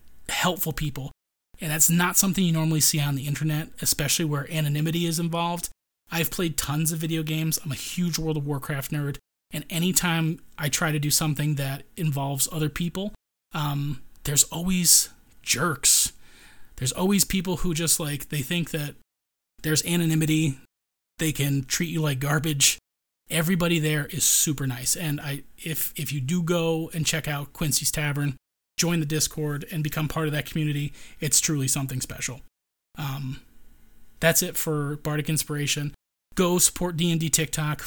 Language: English